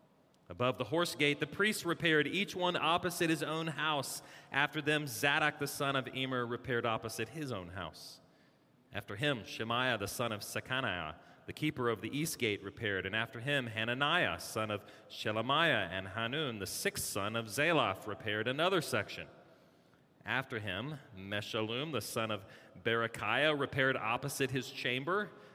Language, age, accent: English, 30-49, American